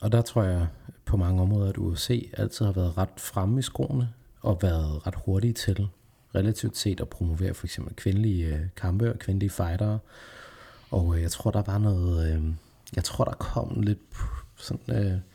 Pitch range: 85-110 Hz